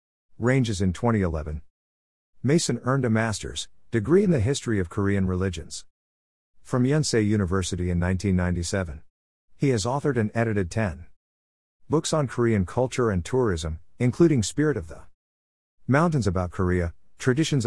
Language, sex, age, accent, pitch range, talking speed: English, male, 50-69, American, 85-115 Hz, 130 wpm